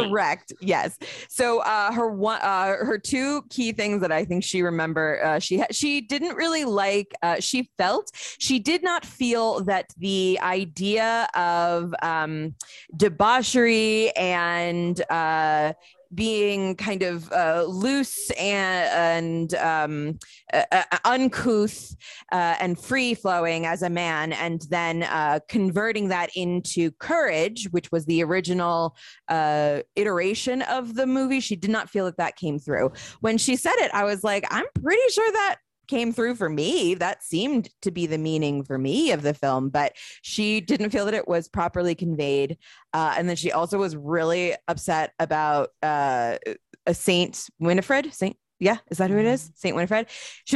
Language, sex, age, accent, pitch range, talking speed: English, female, 20-39, American, 165-225 Hz, 160 wpm